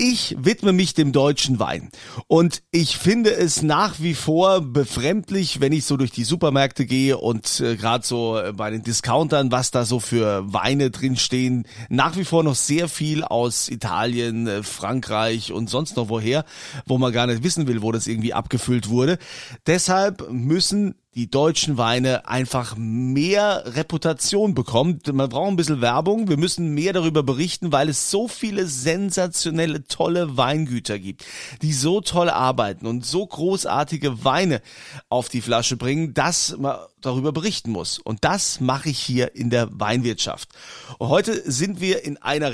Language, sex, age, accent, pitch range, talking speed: German, male, 30-49, German, 120-170 Hz, 165 wpm